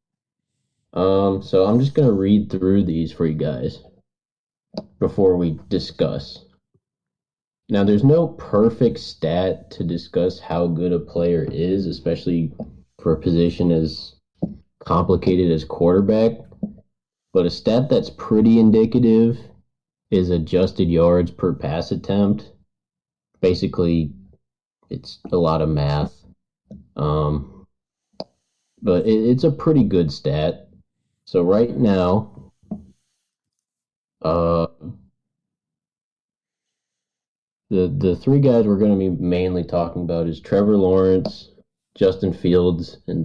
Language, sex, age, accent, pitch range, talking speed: English, male, 20-39, American, 85-100 Hz, 110 wpm